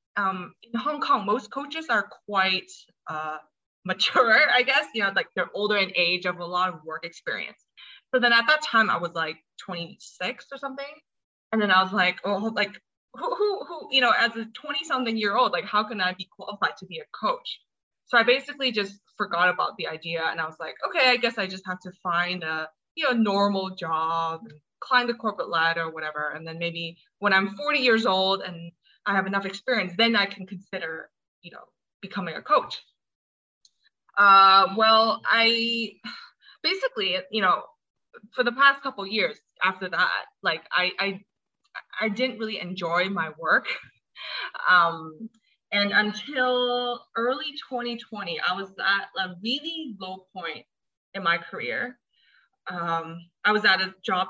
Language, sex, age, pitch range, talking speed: English, female, 20-39, 180-240 Hz, 180 wpm